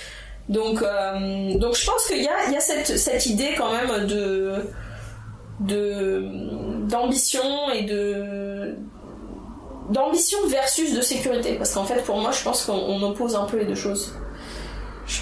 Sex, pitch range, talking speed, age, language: female, 200-255 Hz, 160 wpm, 20-39, French